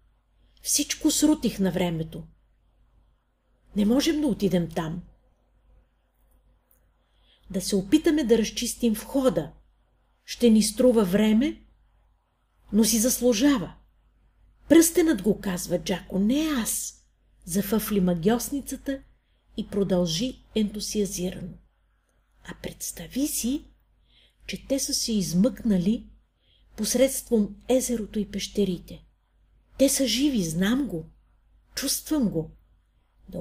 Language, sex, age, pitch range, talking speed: Bulgarian, female, 50-69, 185-260 Hz, 95 wpm